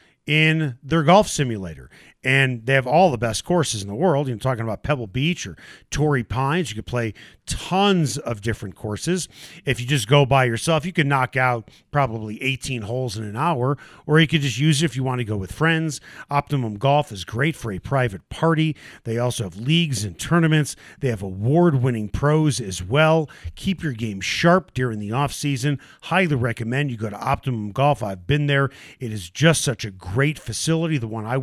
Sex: male